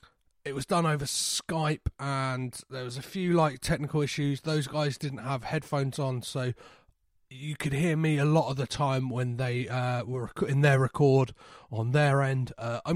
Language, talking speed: English, 185 wpm